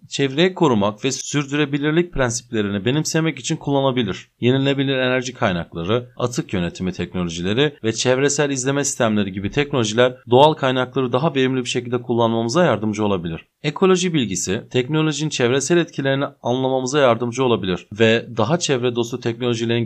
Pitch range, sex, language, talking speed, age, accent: 115-155 Hz, male, Turkish, 125 wpm, 40-59, native